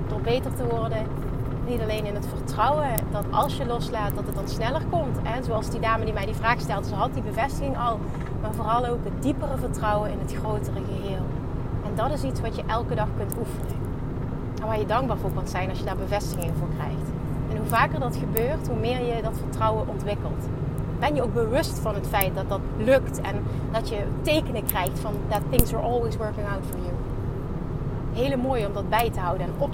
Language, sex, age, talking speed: Dutch, female, 30-49, 220 wpm